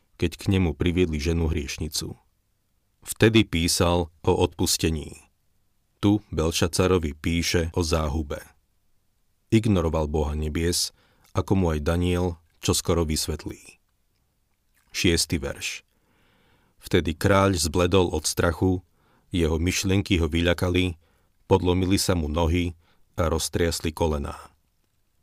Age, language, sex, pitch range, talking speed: 40-59, Slovak, male, 85-100 Hz, 100 wpm